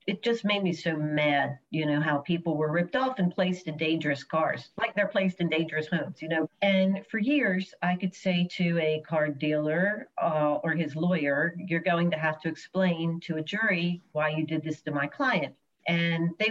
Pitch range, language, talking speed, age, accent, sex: 155-195 Hz, English, 210 wpm, 50-69, American, female